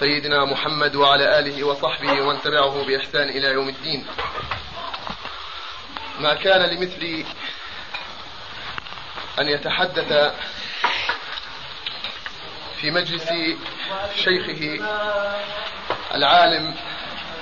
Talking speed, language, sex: 70 wpm, Arabic, male